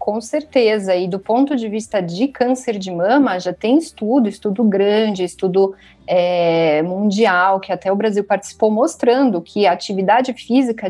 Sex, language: female, Portuguese